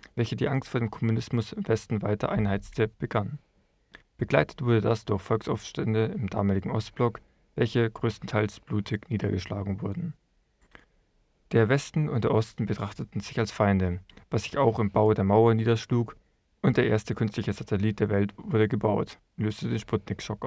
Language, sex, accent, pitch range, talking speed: German, male, German, 105-120 Hz, 155 wpm